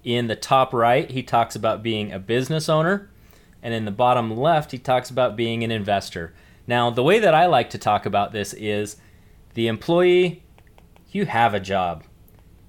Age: 30-49